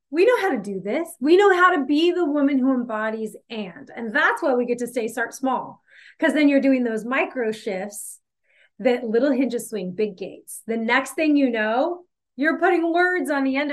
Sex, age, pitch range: female, 30-49, 225-285 Hz